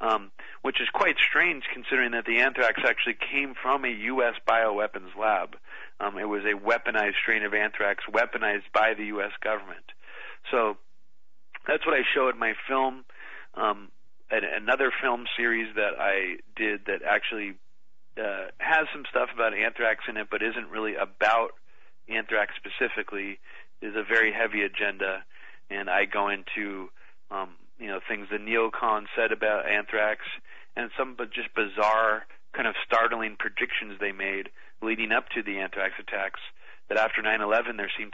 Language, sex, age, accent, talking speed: English, male, 40-59, American, 155 wpm